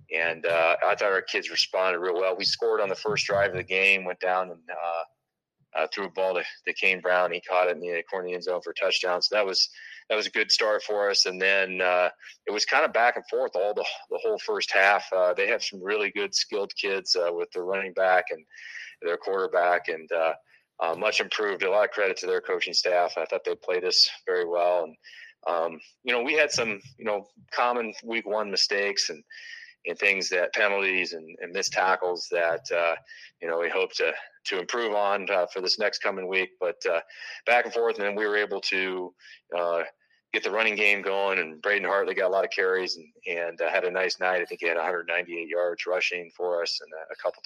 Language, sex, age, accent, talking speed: English, male, 30-49, American, 235 wpm